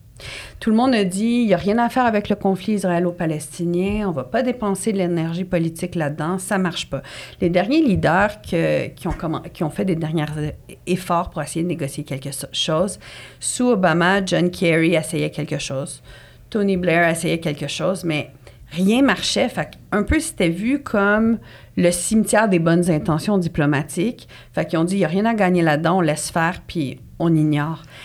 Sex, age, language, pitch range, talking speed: female, 50-69, English, 150-195 Hz, 185 wpm